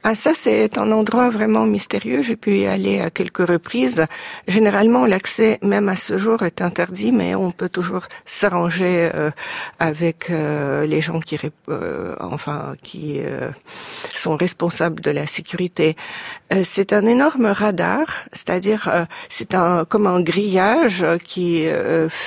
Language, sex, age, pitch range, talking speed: French, female, 50-69, 170-215 Hz, 155 wpm